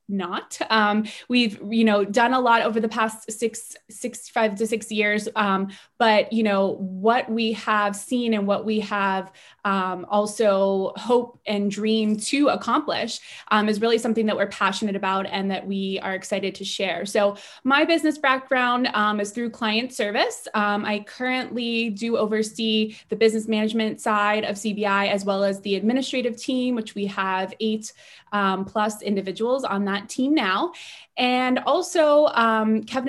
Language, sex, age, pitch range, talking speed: English, female, 20-39, 200-235 Hz, 165 wpm